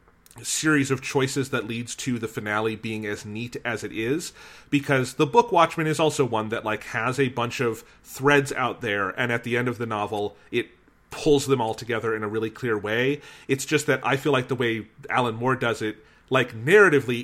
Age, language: 30-49, English